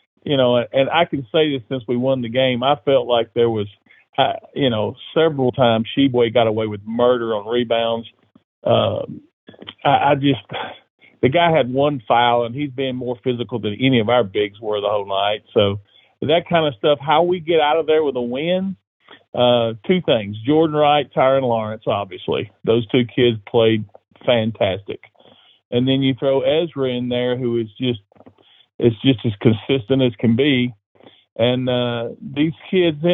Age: 40-59